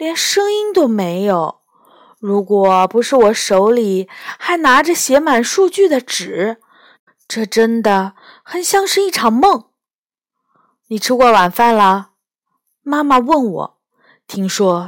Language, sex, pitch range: Chinese, female, 195-310 Hz